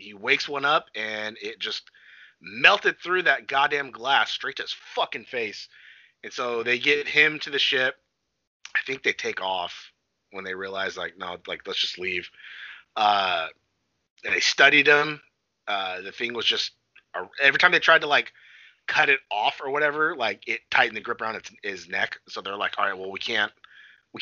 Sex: male